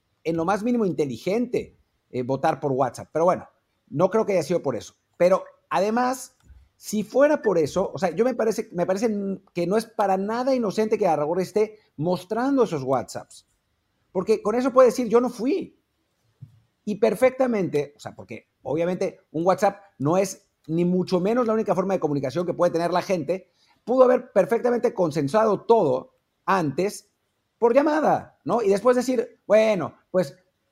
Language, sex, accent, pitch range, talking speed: Spanish, male, Mexican, 155-225 Hz, 170 wpm